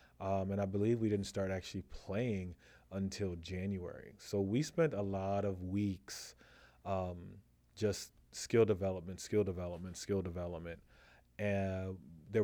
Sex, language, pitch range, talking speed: male, English, 90-105 Hz, 135 wpm